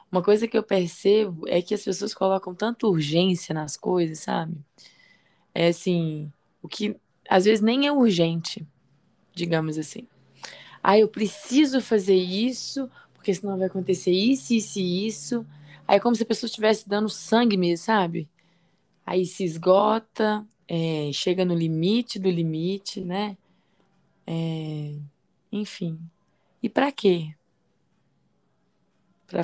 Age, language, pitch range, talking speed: 20-39, Portuguese, 165-205 Hz, 135 wpm